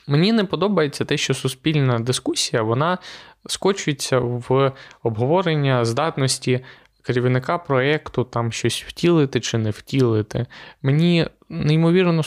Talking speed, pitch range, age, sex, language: 110 wpm, 115-140 Hz, 20-39, male, Ukrainian